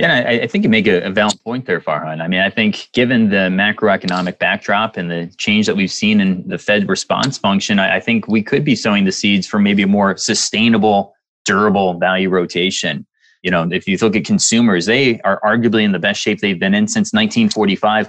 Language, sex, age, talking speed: English, male, 20-39, 220 wpm